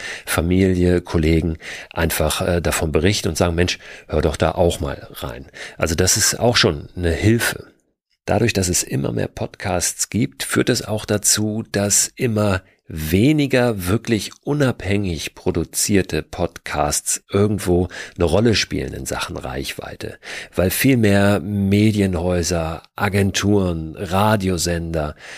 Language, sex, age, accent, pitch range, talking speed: German, male, 40-59, German, 85-105 Hz, 125 wpm